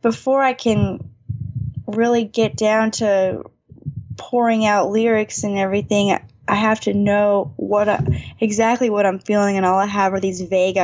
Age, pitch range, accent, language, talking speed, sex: 20-39, 175-205 Hz, American, English, 160 wpm, female